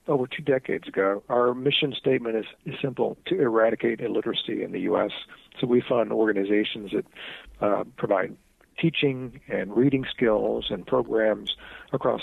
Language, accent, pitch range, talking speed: English, American, 100-125 Hz, 145 wpm